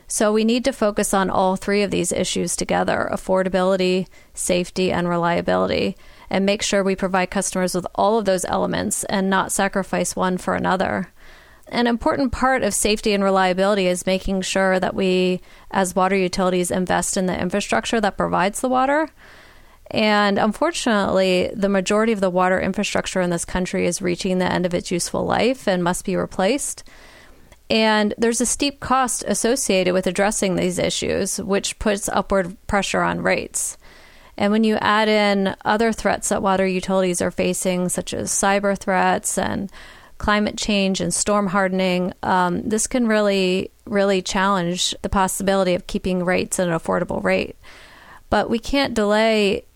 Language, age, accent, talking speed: English, 30-49, American, 160 wpm